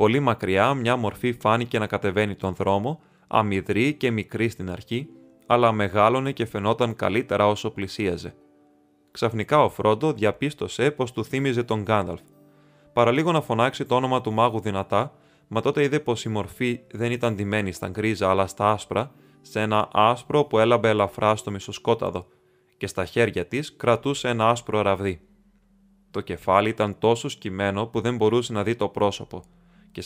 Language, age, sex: Greek, 20-39, male